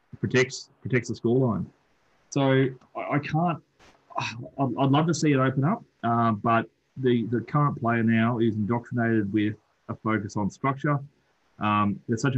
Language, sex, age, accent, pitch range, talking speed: English, male, 30-49, Australian, 115-140 Hz, 160 wpm